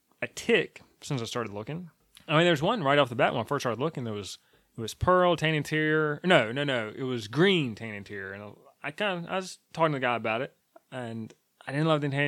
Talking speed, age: 255 wpm, 20-39